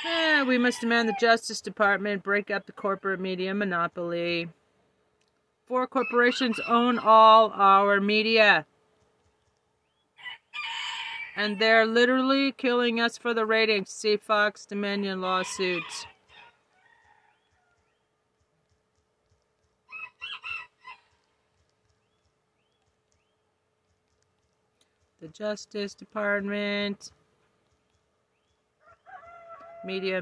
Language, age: English, 40-59